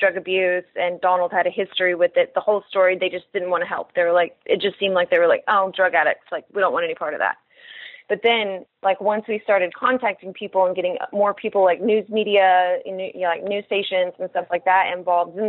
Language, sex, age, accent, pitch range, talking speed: English, female, 30-49, American, 190-240 Hz, 245 wpm